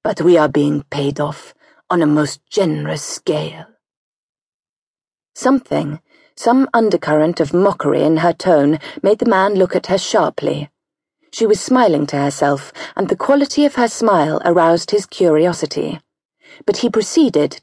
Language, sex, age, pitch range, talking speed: English, female, 40-59, 155-220 Hz, 145 wpm